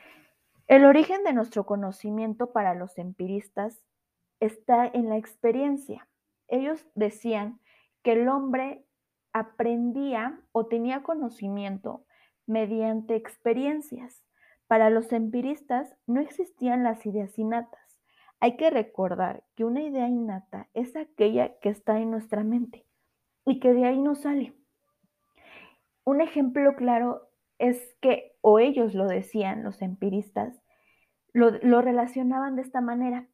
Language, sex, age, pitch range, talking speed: Spanish, female, 20-39, 215-260 Hz, 120 wpm